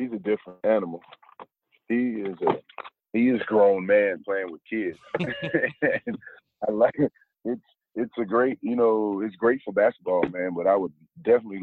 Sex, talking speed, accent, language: male, 160 wpm, American, English